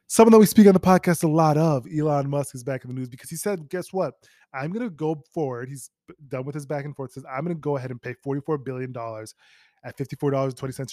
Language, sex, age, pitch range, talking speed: English, male, 20-39, 120-155 Hz, 260 wpm